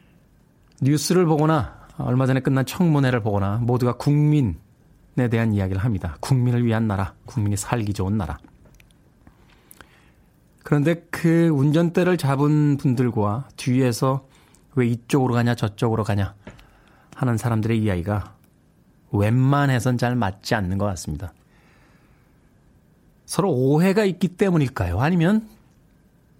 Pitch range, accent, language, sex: 115-150 Hz, native, Korean, male